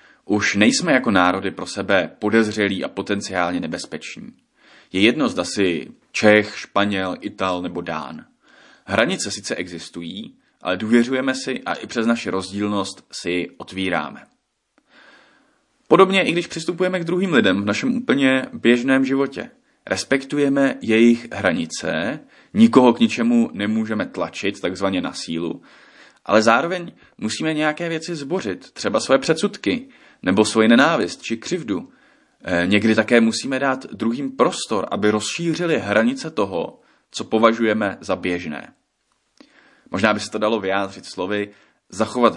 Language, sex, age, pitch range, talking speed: Czech, male, 30-49, 95-130 Hz, 130 wpm